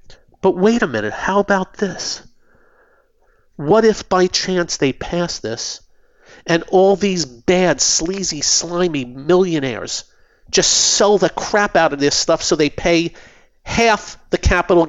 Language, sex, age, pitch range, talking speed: English, male, 40-59, 150-195 Hz, 140 wpm